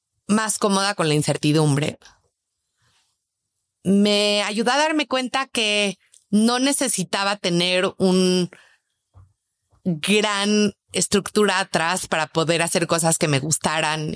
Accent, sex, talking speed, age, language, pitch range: Mexican, female, 105 wpm, 30-49, Spanish, 155-245 Hz